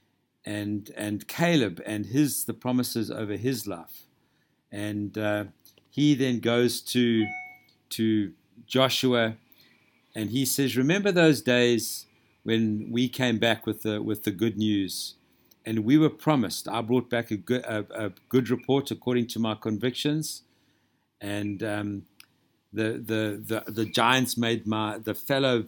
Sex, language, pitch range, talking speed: male, English, 105-125 Hz, 145 wpm